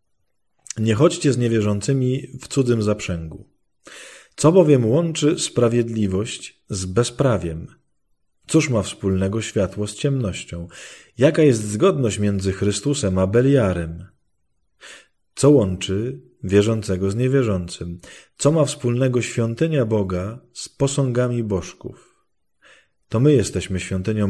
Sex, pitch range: male, 95-125 Hz